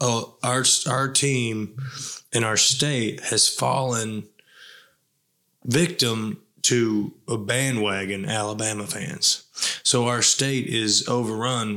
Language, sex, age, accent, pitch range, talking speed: English, male, 20-39, American, 110-130 Hz, 100 wpm